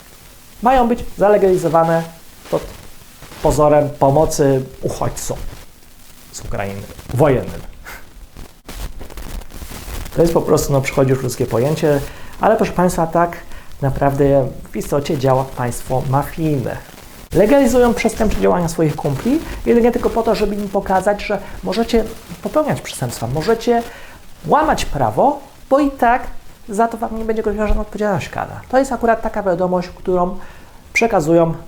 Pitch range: 135-210 Hz